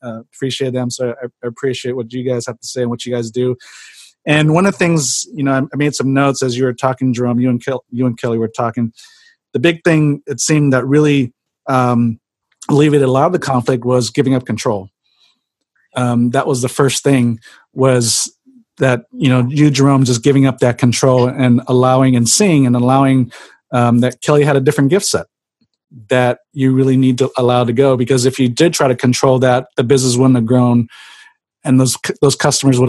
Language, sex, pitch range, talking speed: English, male, 120-135 Hz, 215 wpm